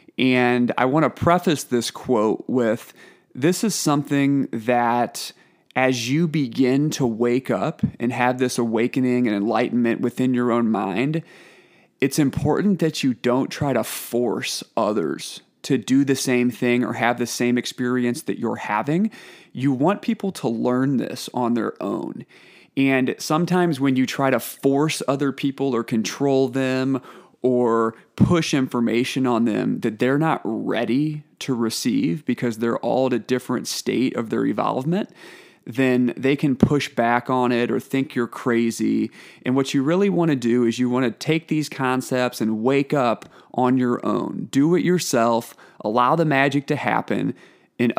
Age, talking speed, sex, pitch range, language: 30-49, 165 wpm, male, 120-145 Hz, English